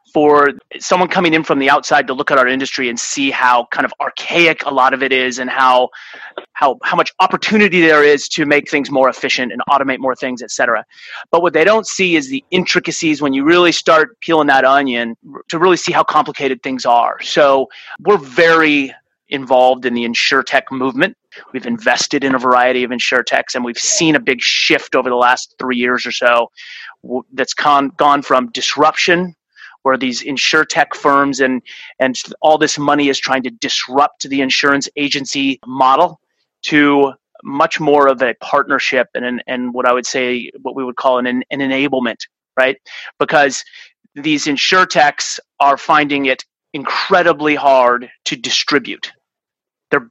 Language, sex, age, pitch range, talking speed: English, male, 30-49, 130-160 Hz, 180 wpm